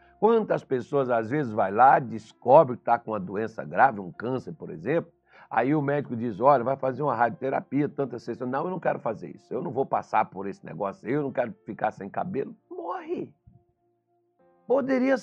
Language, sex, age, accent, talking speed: Portuguese, male, 60-79, Brazilian, 195 wpm